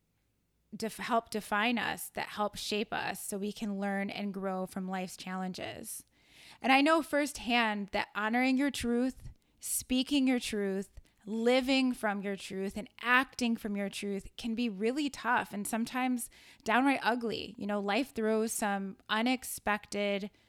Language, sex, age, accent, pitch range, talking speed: English, female, 20-39, American, 195-225 Hz, 150 wpm